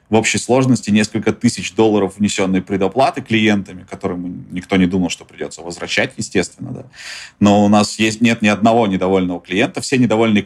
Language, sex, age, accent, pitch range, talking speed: Russian, male, 30-49, native, 90-110 Hz, 165 wpm